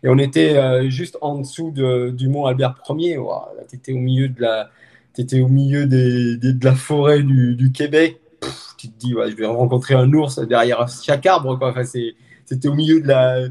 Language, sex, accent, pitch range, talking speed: French, male, French, 120-150 Hz, 215 wpm